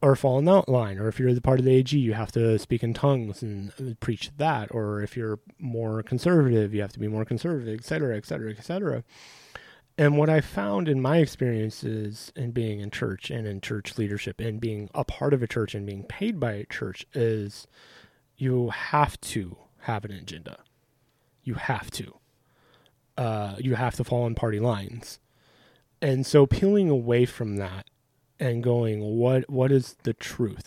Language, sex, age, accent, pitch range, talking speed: English, male, 30-49, American, 110-135 Hz, 185 wpm